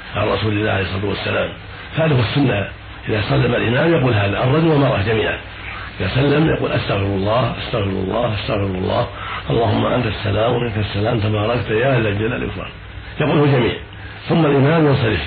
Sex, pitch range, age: male, 100-125 Hz, 50-69